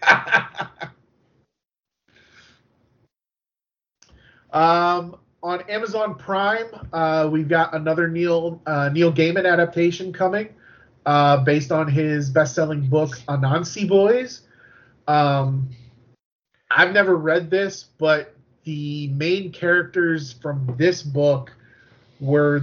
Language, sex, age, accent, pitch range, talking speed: English, male, 30-49, American, 130-165 Hz, 95 wpm